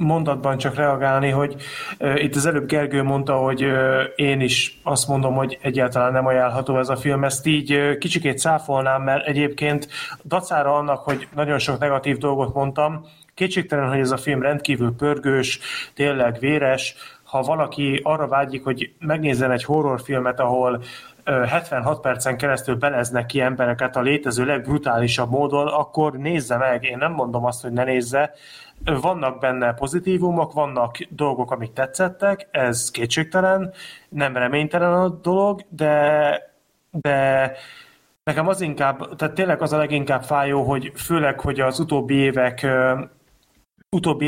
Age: 30-49